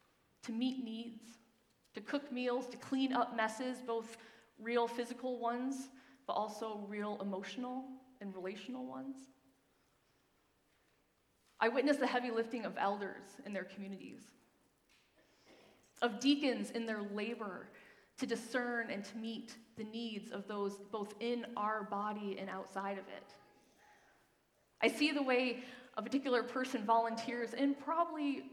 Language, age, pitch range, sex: English, 20-39, 215-260 Hz, female